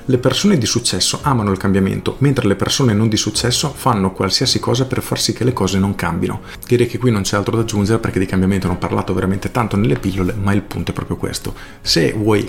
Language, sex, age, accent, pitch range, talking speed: Italian, male, 40-59, native, 100-125 Hz, 240 wpm